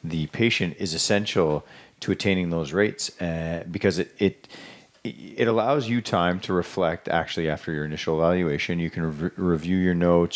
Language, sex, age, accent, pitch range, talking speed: English, male, 30-49, American, 80-95 Hz, 170 wpm